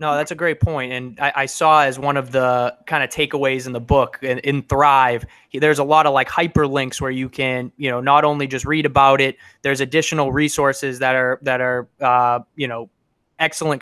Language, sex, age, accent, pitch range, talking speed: English, male, 20-39, American, 135-155 Hz, 215 wpm